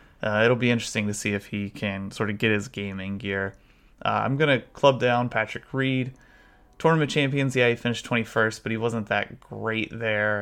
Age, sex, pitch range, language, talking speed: 20-39, male, 100-120 Hz, English, 205 wpm